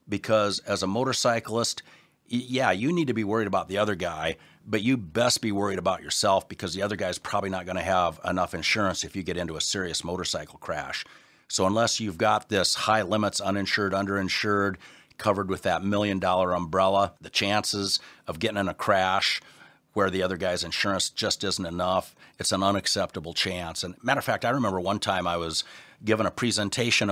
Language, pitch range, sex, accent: English, 95-110 Hz, male, American